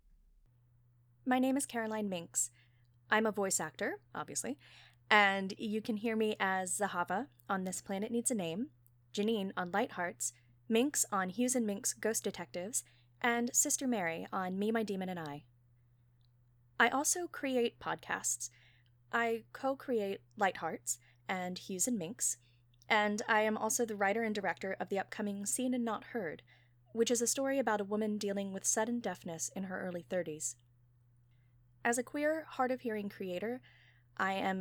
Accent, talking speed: American, 160 wpm